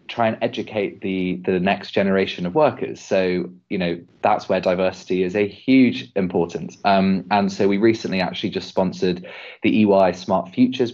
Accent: British